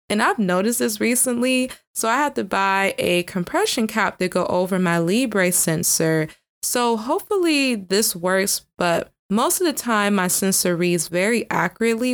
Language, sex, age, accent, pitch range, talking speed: English, female, 20-39, American, 175-235 Hz, 165 wpm